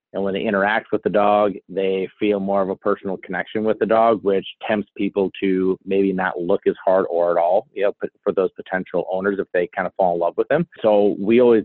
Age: 30-49